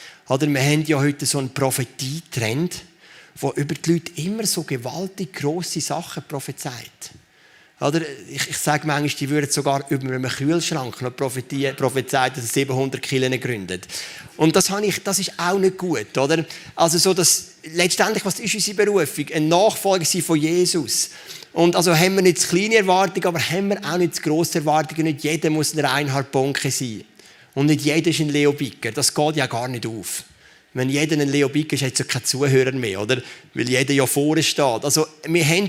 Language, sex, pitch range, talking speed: German, male, 125-165 Hz, 195 wpm